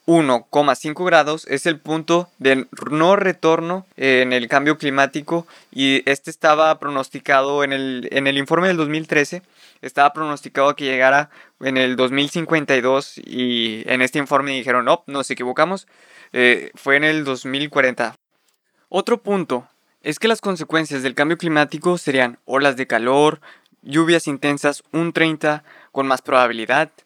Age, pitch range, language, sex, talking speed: 20-39, 130-155 Hz, Spanish, male, 140 wpm